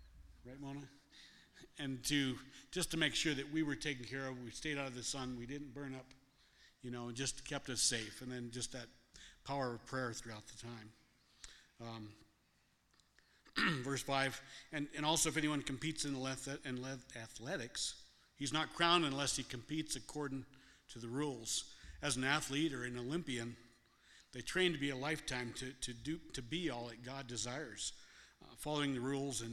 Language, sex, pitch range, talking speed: English, male, 120-145 Hz, 180 wpm